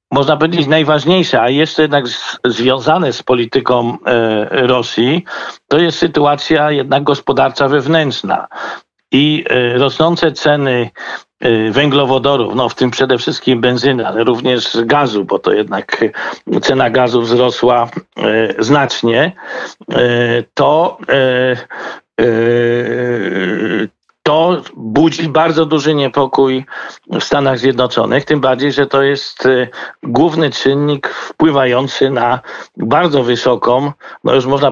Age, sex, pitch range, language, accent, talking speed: 50-69, male, 120-145 Hz, Polish, native, 100 wpm